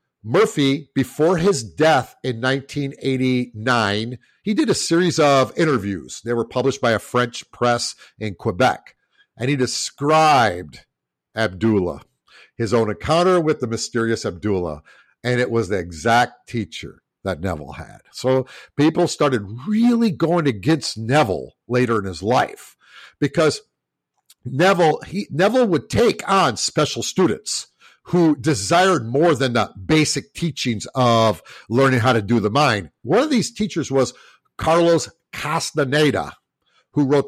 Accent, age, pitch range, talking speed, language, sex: American, 50-69, 110-150 Hz, 135 wpm, English, male